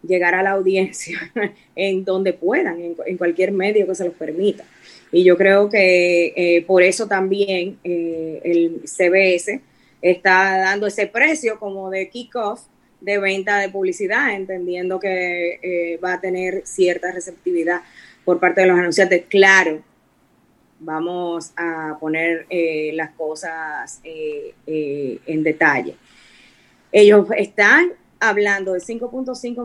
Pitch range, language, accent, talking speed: 175-200 Hz, Spanish, American, 135 wpm